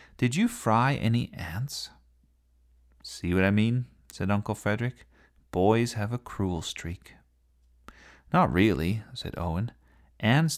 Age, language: 40-59, English